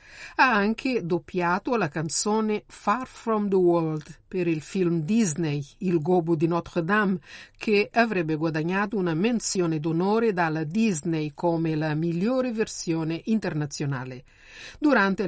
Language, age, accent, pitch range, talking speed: Italian, 50-69, native, 160-205 Hz, 125 wpm